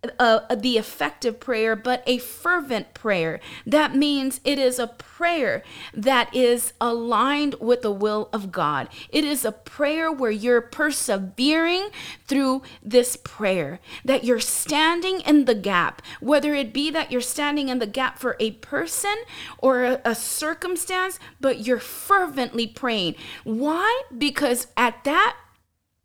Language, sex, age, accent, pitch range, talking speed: English, female, 30-49, American, 235-315 Hz, 145 wpm